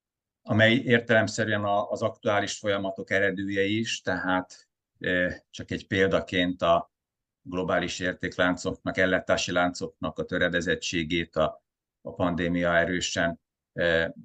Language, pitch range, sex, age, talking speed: Hungarian, 85-95 Hz, male, 50-69, 90 wpm